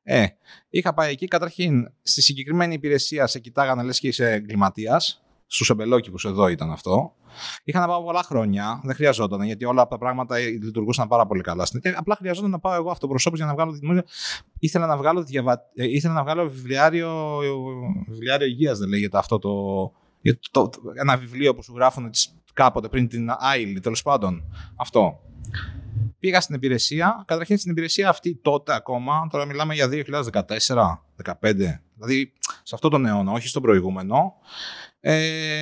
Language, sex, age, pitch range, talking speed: Greek, male, 30-49, 115-160 Hz, 155 wpm